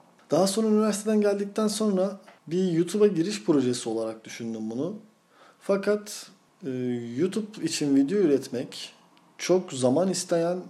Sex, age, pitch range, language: male, 40-59, 130-175 Hz, Turkish